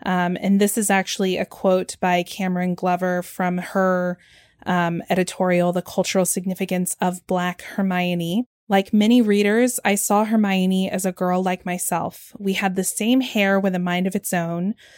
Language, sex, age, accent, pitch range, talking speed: English, female, 20-39, American, 180-205 Hz, 170 wpm